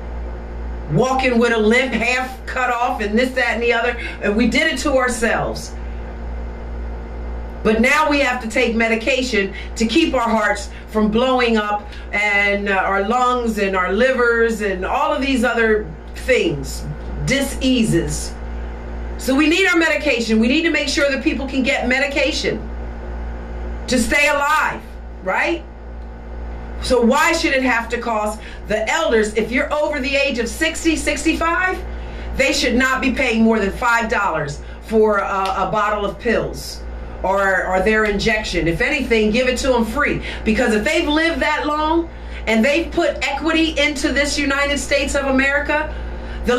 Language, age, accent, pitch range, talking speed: English, 50-69, American, 195-275 Hz, 160 wpm